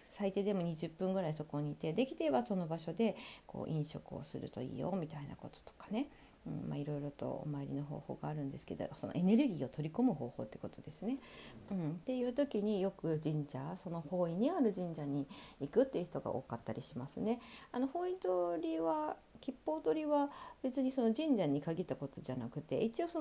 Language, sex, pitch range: Japanese, female, 150-245 Hz